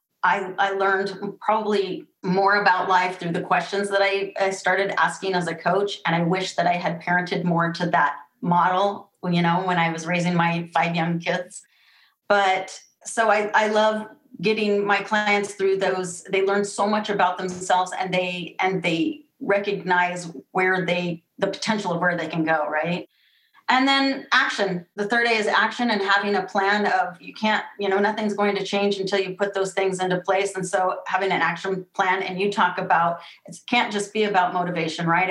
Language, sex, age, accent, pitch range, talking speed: English, female, 30-49, American, 175-200 Hz, 195 wpm